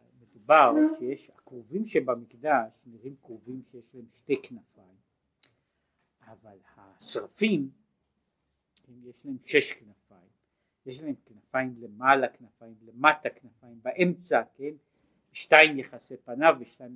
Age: 60-79